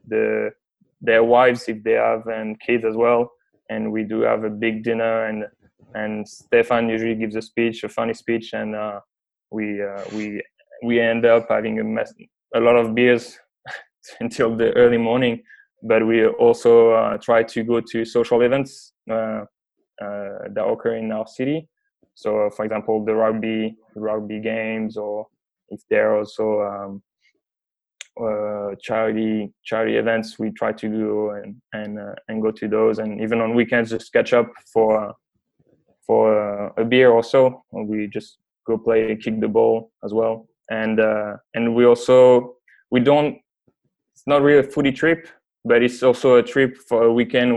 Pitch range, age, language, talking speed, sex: 110-120 Hz, 20-39, English, 170 wpm, male